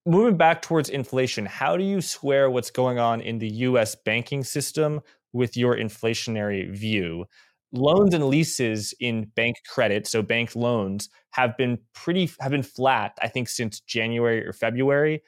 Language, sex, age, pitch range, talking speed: English, male, 20-39, 115-140 Hz, 155 wpm